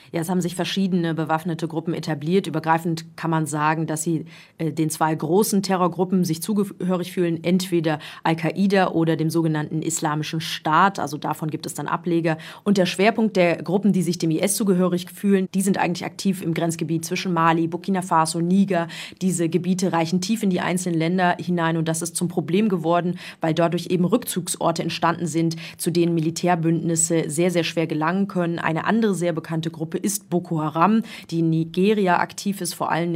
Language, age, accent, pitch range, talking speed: German, 30-49, German, 165-185 Hz, 185 wpm